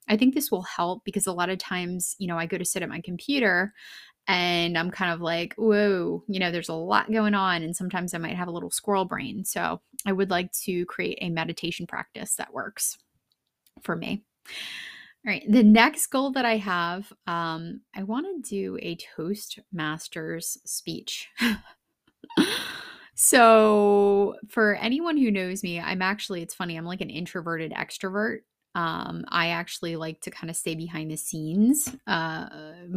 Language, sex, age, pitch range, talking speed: English, female, 20-39, 165-210 Hz, 175 wpm